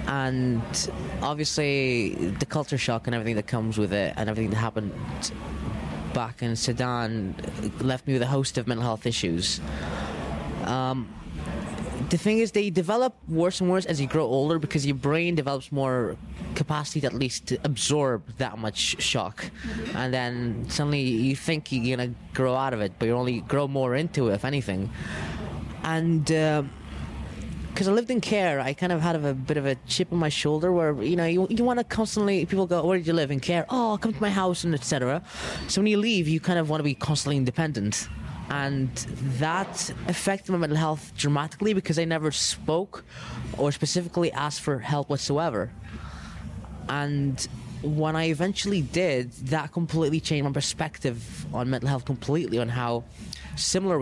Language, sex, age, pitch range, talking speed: English, male, 20-39, 120-165 Hz, 180 wpm